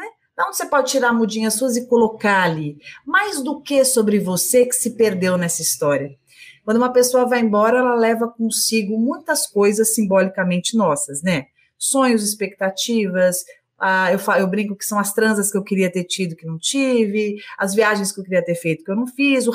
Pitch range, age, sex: 195-265 Hz, 30-49, female